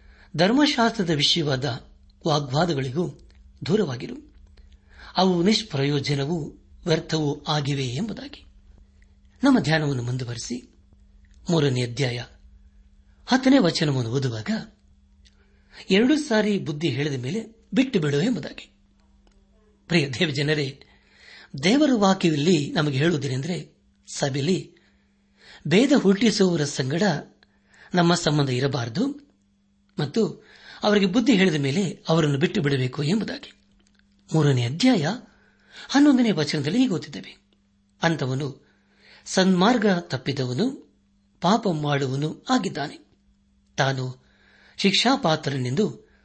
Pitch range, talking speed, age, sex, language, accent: 120-190 Hz, 80 wpm, 60-79, male, Kannada, native